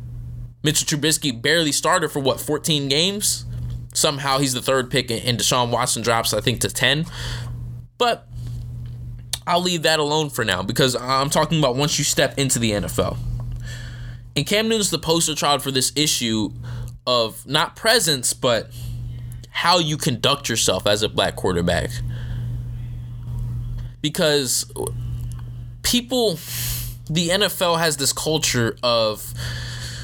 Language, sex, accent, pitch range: English, male, American, 120-150 Hz